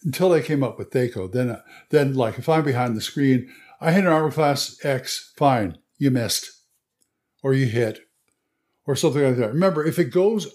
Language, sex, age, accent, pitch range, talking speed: English, male, 60-79, American, 125-170 Hz, 200 wpm